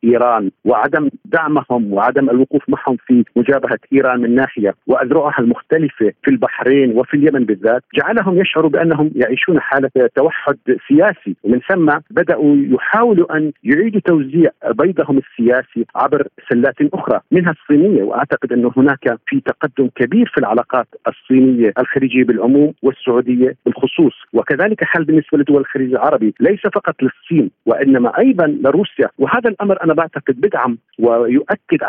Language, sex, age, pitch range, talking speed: Arabic, male, 50-69, 130-195 Hz, 130 wpm